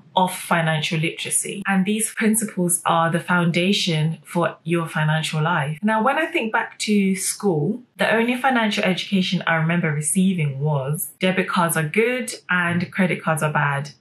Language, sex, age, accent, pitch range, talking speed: English, female, 30-49, British, 155-200 Hz, 160 wpm